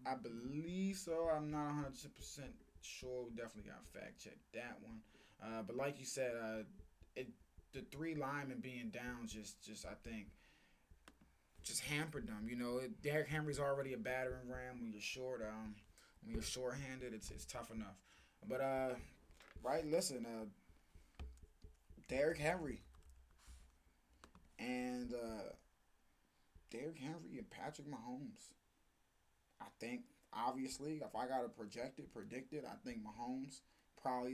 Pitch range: 110-140 Hz